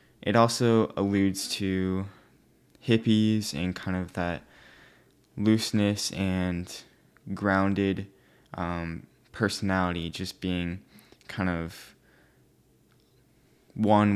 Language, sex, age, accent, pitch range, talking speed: English, male, 20-39, American, 90-110 Hz, 80 wpm